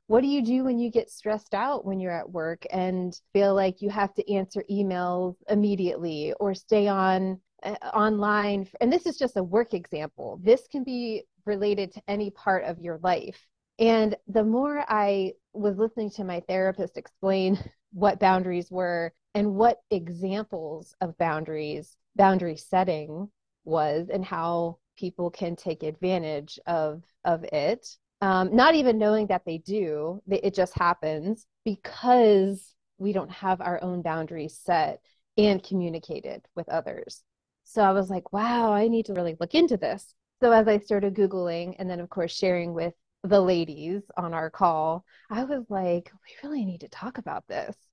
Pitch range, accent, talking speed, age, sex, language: 175-210 Hz, American, 170 wpm, 30-49, female, English